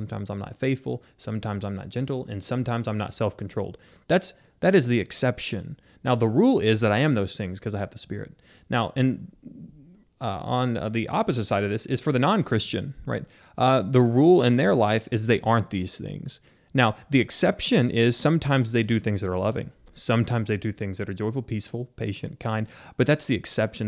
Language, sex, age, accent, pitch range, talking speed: English, male, 30-49, American, 110-140 Hz, 210 wpm